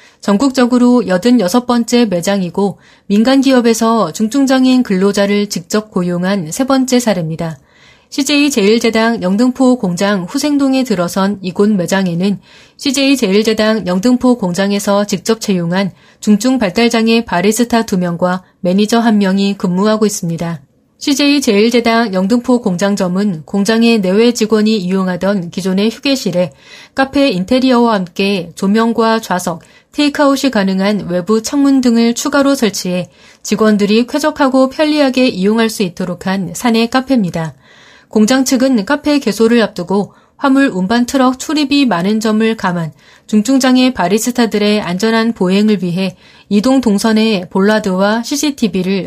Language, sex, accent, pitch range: Korean, female, native, 195-245 Hz